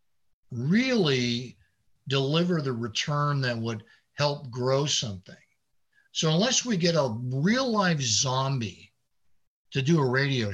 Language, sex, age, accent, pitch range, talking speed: English, male, 50-69, American, 110-135 Hz, 120 wpm